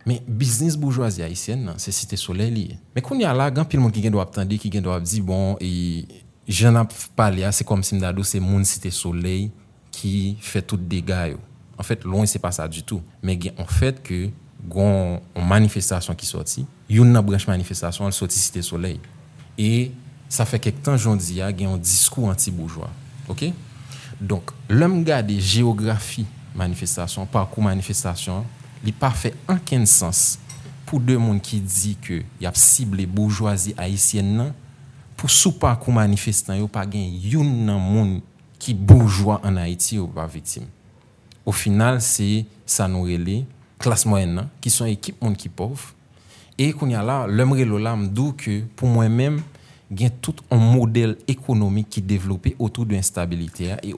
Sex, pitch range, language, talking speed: male, 95-125 Hz, French, 170 wpm